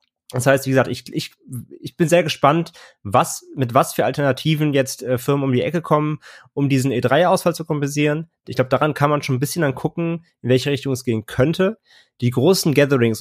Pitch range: 125-155 Hz